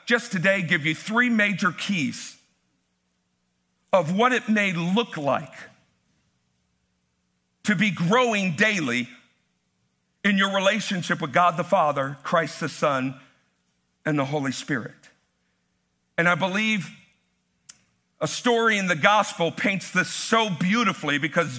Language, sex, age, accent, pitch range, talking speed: English, male, 50-69, American, 145-215 Hz, 120 wpm